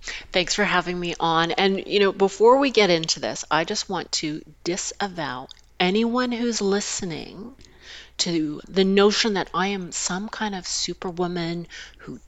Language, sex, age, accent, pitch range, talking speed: English, female, 40-59, American, 155-195 Hz, 155 wpm